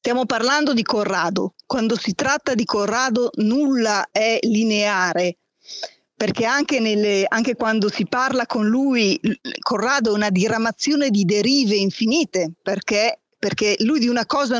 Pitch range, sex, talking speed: 210-275 Hz, female, 135 wpm